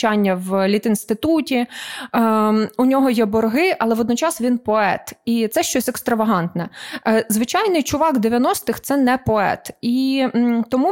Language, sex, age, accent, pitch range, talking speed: Ukrainian, female, 20-39, native, 220-265 Hz, 125 wpm